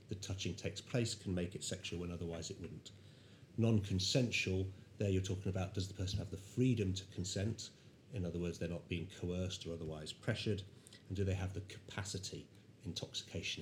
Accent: British